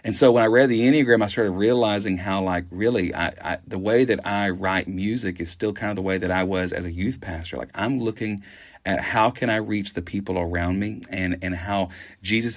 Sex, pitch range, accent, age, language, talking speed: male, 95-110 Hz, American, 30-49, English, 230 wpm